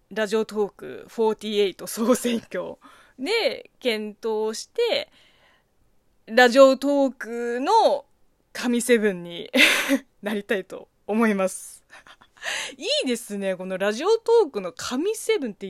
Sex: female